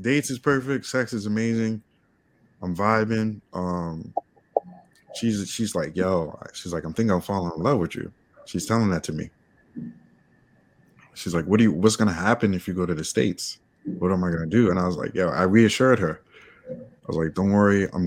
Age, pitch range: 20-39, 95-115 Hz